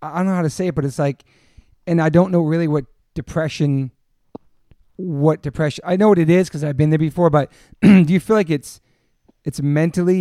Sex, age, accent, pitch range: male, 30-49, American, 135-165 Hz